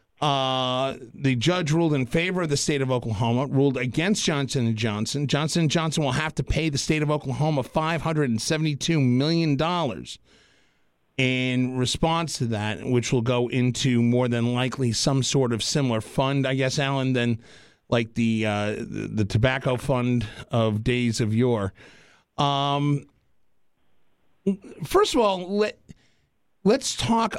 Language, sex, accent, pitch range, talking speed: English, male, American, 125-155 Hz, 145 wpm